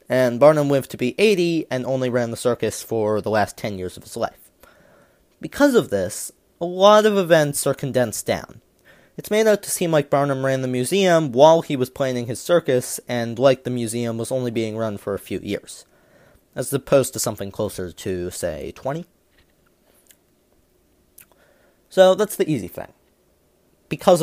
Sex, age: male, 30-49